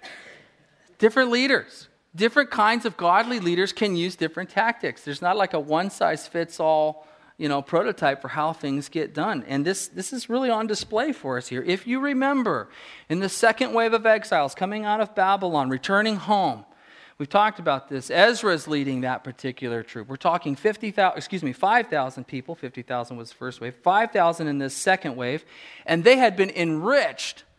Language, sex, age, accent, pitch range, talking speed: English, male, 40-59, American, 150-210 Hz, 175 wpm